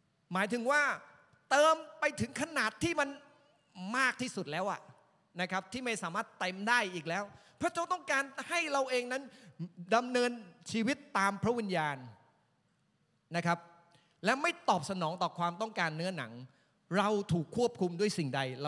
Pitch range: 155-240 Hz